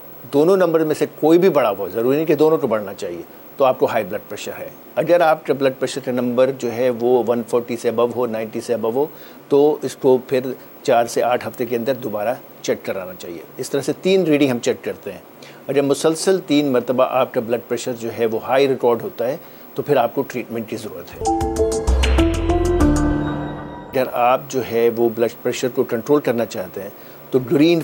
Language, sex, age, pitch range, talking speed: Urdu, male, 50-69, 115-140 Hz, 220 wpm